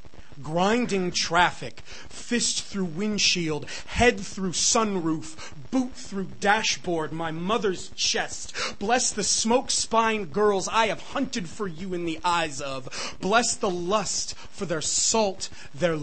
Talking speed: 125 wpm